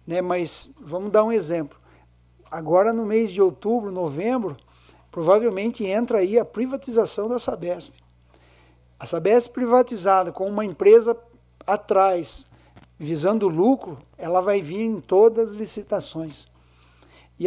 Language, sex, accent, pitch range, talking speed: Portuguese, male, Brazilian, 175-235 Hz, 120 wpm